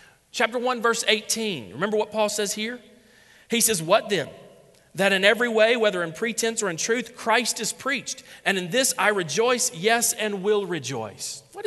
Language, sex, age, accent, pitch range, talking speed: English, male, 40-59, American, 185-235 Hz, 185 wpm